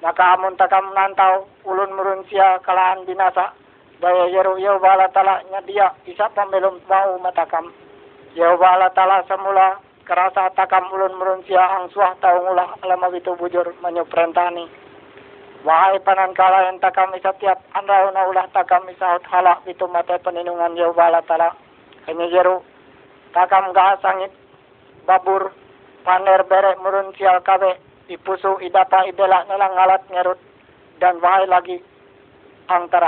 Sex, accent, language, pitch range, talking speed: male, native, Indonesian, 180-195 Hz, 120 wpm